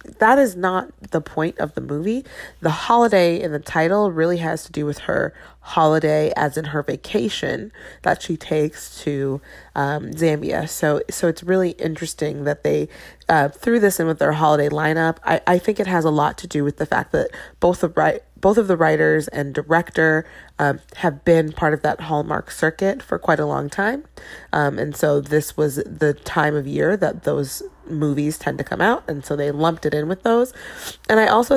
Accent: American